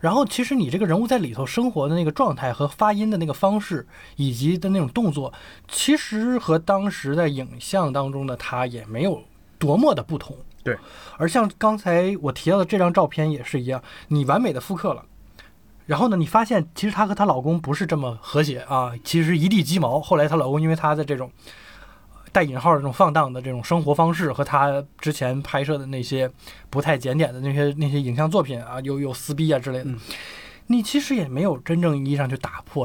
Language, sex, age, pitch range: Chinese, male, 20-39, 130-170 Hz